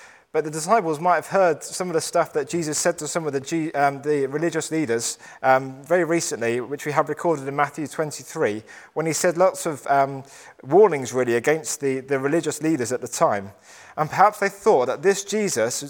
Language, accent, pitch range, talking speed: English, British, 135-175 Hz, 205 wpm